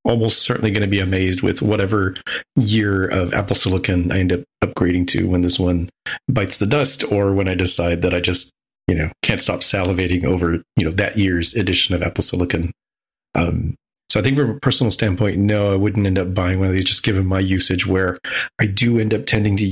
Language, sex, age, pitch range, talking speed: English, male, 30-49, 90-105 Hz, 220 wpm